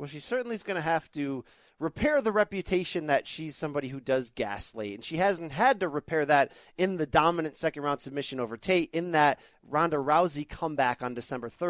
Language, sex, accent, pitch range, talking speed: English, male, American, 140-205 Hz, 205 wpm